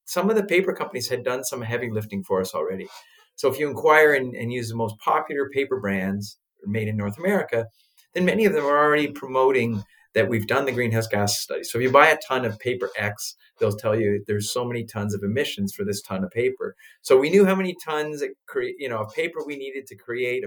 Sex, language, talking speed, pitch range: male, English, 235 wpm, 105-180 Hz